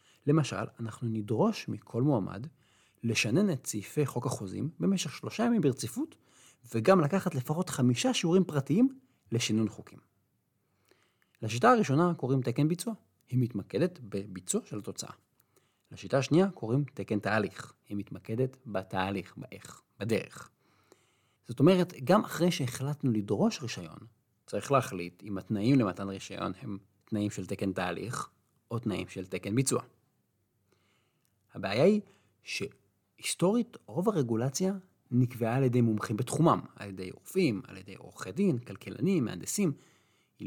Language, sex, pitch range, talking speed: Hebrew, male, 110-160 Hz, 125 wpm